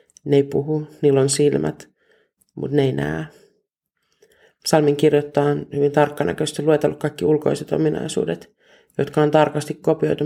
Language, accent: Finnish, native